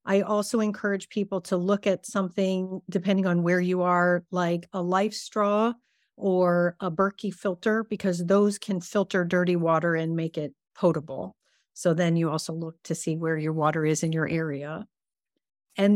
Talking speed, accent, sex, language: 175 wpm, American, female, English